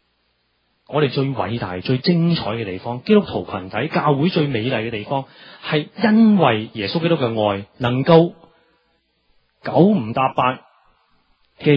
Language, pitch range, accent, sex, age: Chinese, 90-145 Hz, native, male, 30-49